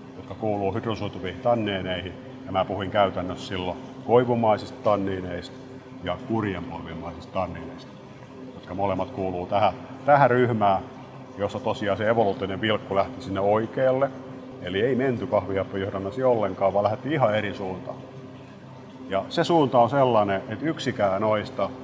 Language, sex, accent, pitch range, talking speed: Finnish, male, native, 95-130 Hz, 125 wpm